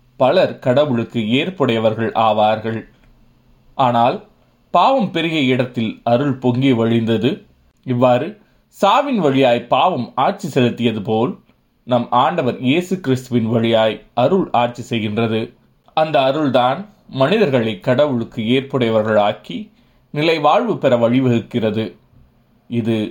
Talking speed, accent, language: 95 wpm, native, Tamil